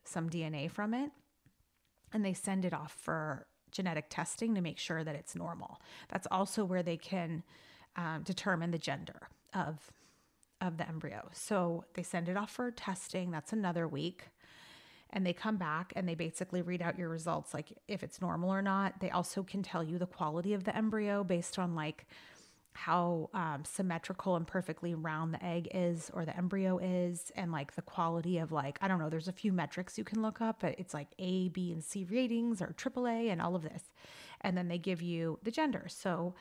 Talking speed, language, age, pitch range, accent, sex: 205 wpm, English, 30-49, 170-205 Hz, American, female